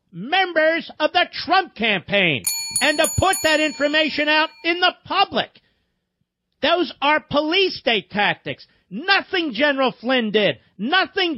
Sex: male